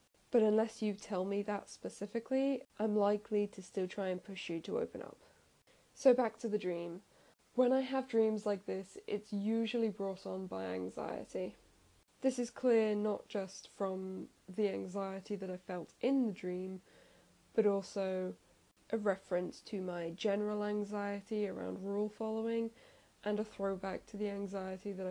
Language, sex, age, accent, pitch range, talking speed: English, female, 10-29, British, 190-230 Hz, 160 wpm